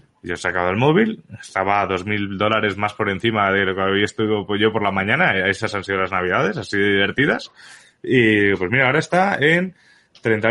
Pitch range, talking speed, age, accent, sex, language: 95-125 Hz, 210 wpm, 20-39, Spanish, male, Spanish